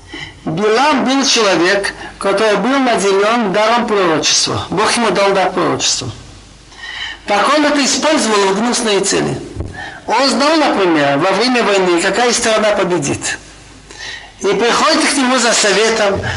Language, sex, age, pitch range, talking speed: Russian, male, 60-79, 205-270 Hz, 130 wpm